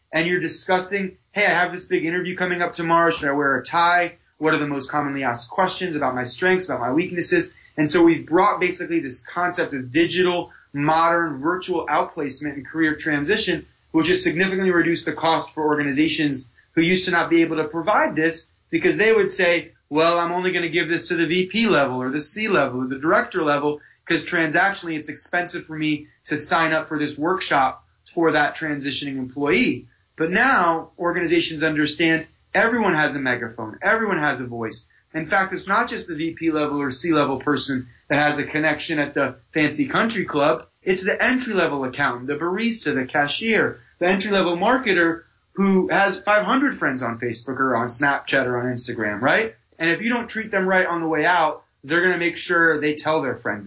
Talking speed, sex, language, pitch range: 200 wpm, male, English, 145-180 Hz